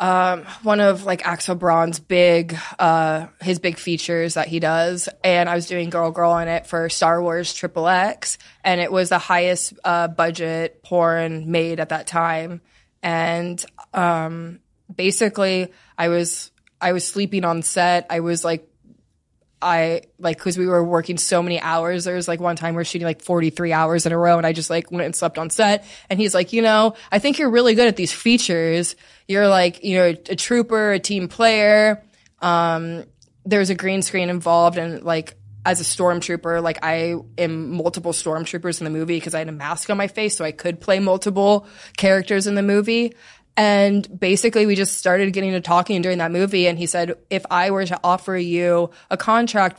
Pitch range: 170-195 Hz